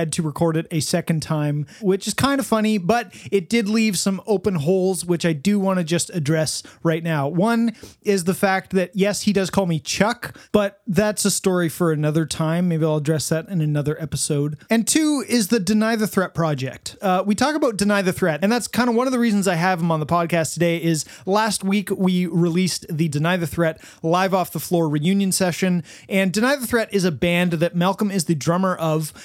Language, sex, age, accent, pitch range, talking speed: English, male, 30-49, American, 160-200 Hz, 225 wpm